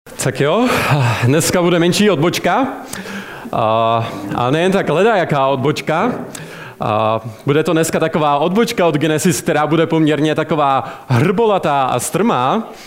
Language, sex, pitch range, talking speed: Czech, male, 130-170 Hz, 115 wpm